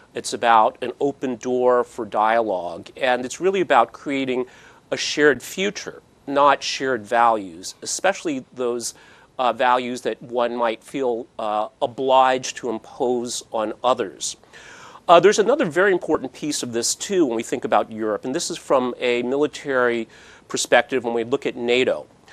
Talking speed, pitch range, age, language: 155 wpm, 120-150 Hz, 40-59, English